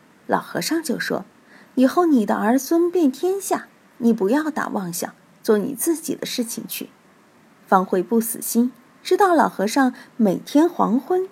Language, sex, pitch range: Chinese, female, 220-290 Hz